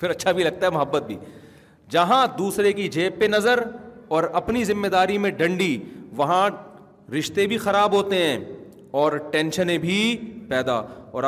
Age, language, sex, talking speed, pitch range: 40-59, Urdu, male, 160 wpm, 145-190 Hz